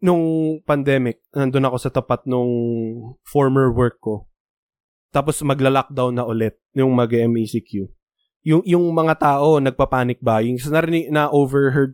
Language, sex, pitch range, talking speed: Filipino, male, 125-165 Hz, 120 wpm